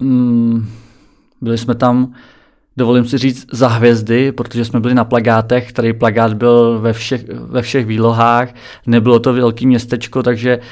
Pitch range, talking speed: 120-135 Hz, 140 wpm